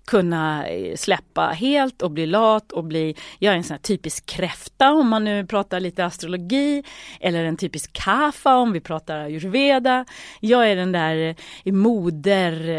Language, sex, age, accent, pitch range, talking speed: Swedish, female, 30-49, native, 170-230 Hz, 160 wpm